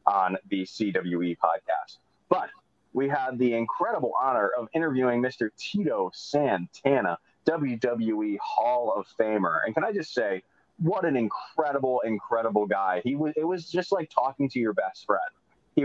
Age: 30-49